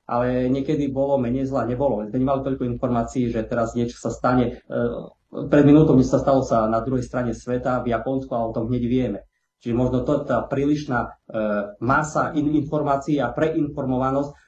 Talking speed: 170 wpm